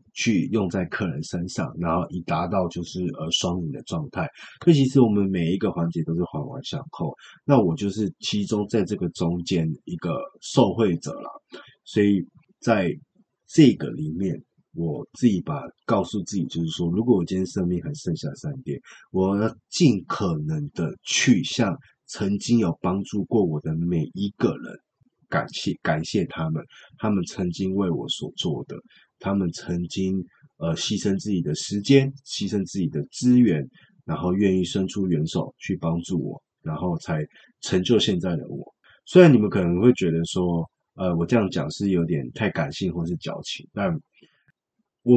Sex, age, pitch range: male, 20-39, 85-115 Hz